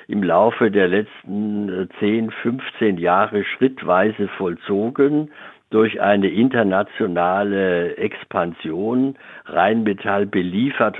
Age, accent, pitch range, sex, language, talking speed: 60-79, German, 95-110 Hz, male, German, 80 wpm